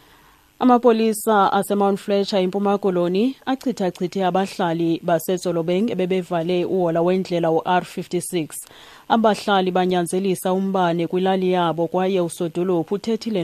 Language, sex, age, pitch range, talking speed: English, female, 30-49, 170-190 Hz, 110 wpm